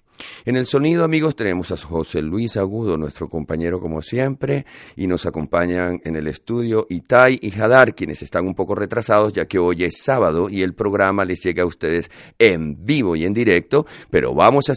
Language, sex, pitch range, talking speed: Spanish, male, 80-110 Hz, 190 wpm